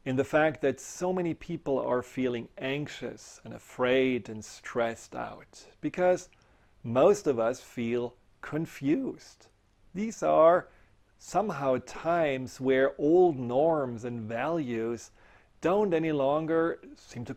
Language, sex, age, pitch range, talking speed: English, male, 40-59, 120-155 Hz, 120 wpm